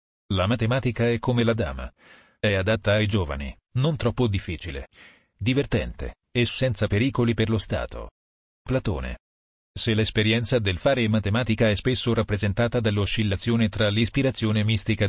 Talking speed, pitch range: 130 wpm, 95-120 Hz